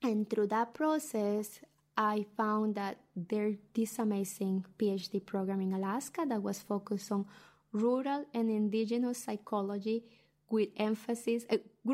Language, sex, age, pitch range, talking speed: English, female, 20-39, 205-235 Hz, 125 wpm